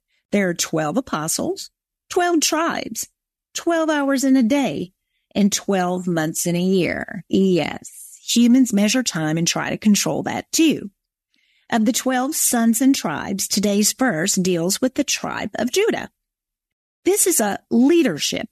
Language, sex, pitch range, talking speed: English, female, 185-260 Hz, 145 wpm